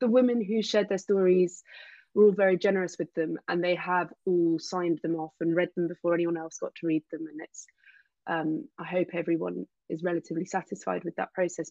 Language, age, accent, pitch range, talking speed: English, 20-39, British, 170-205 Hz, 205 wpm